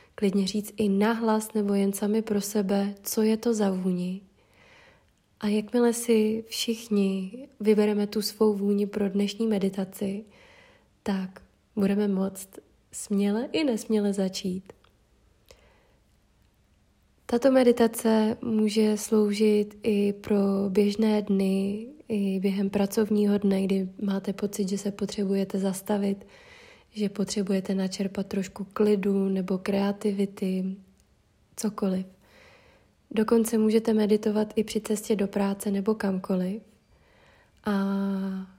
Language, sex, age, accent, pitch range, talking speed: Czech, female, 20-39, native, 195-220 Hz, 110 wpm